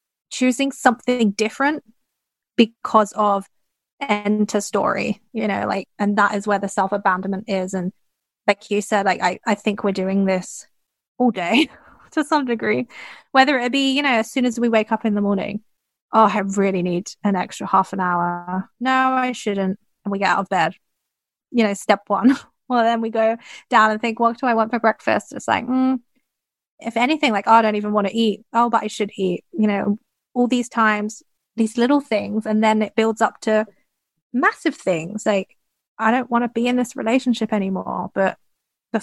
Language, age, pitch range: English, 20-39, 195-235 Hz